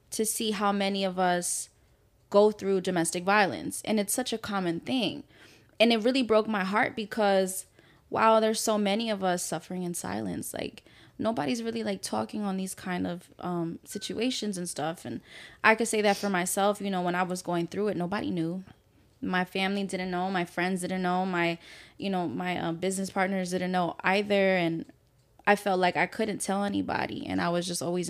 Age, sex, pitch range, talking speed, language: 20-39, female, 180-210 Hz, 200 wpm, English